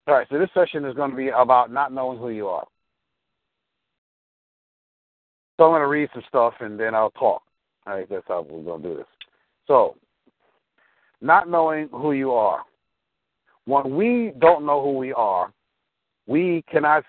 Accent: American